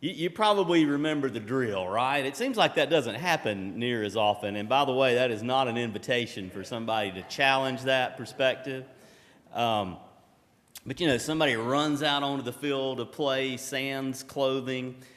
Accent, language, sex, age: American, English, male, 40-59